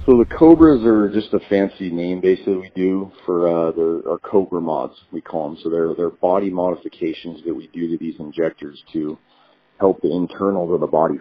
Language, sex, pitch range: English, male, 85-95 Hz